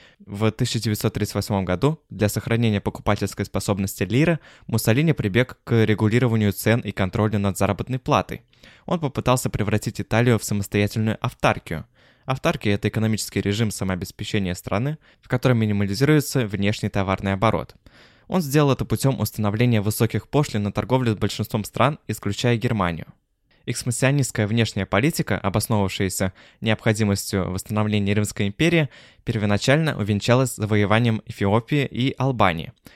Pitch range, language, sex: 105-125 Hz, Russian, male